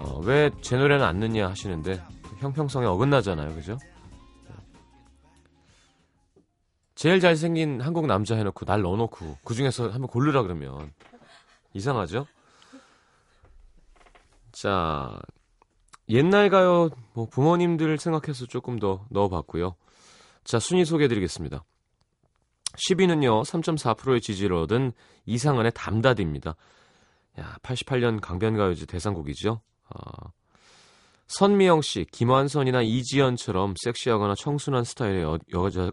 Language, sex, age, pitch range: Korean, male, 30-49, 90-130 Hz